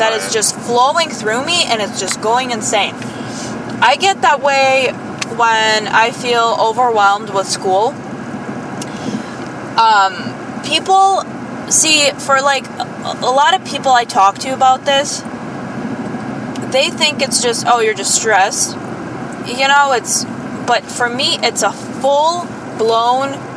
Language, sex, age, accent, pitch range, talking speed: English, female, 20-39, American, 195-255 Hz, 130 wpm